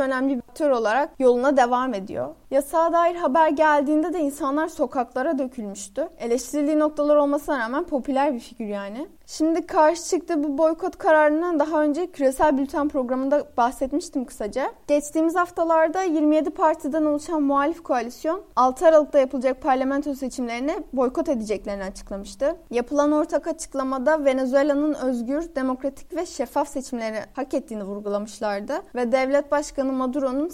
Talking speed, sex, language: 130 wpm, female, Turkish